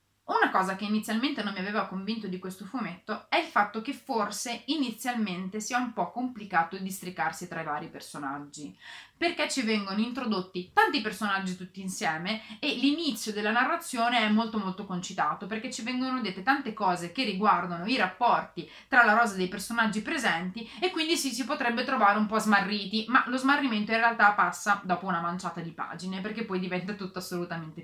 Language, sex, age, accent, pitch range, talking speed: Italian, female, 30-49, native, 185-240 Hz, 175 wpm